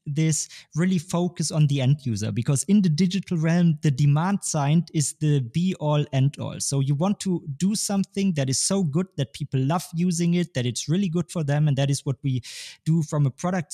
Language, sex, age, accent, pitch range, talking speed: English, male, 20-39, German, 140-170 Hz, 225 wpm